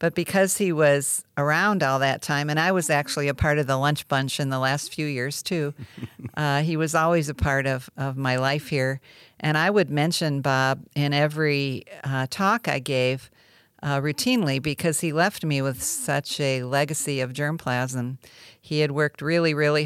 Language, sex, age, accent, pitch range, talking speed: English, female, 50-69, American, 135-155 Hz, 190 wpm